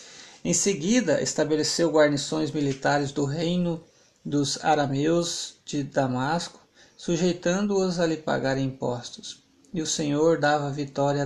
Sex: male